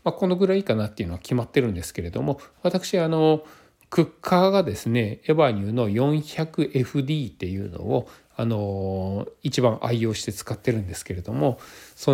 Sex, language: male, Japanese